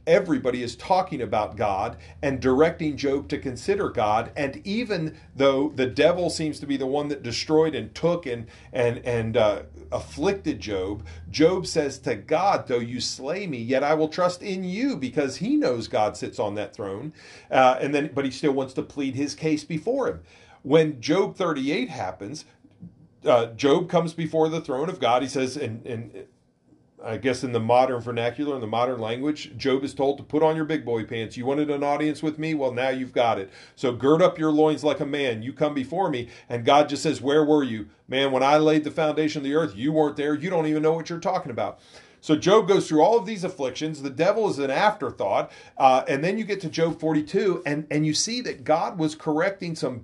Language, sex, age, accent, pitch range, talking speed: English, male, 40-59, American, 130-160 Hz, 220 wpm